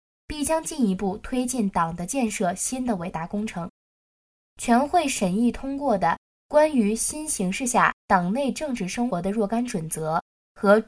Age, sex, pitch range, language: 10-29, female, 190-250 Hz, Chinese